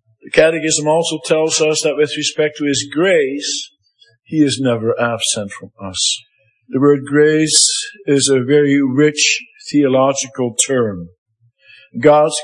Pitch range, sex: 130-165 Hz, male